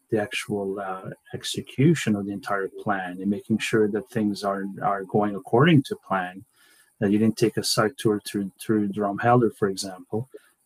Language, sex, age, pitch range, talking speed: English, male, 30-49, 100-115 Hz, 175 wpm